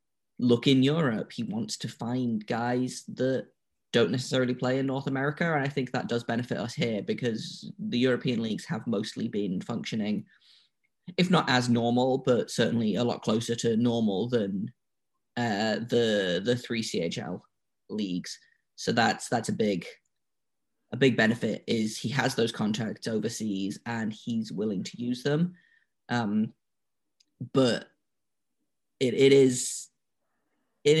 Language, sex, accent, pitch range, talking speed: English, male, British, 120-175 Hz, 145 wpm